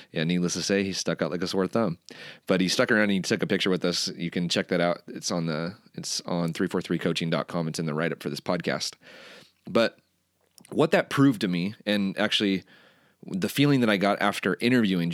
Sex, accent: male, American